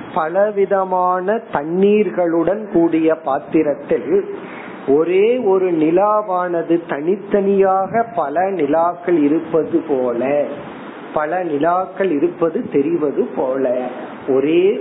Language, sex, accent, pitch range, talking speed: Tamil, male, native, 145-190 Hz, 70 wpm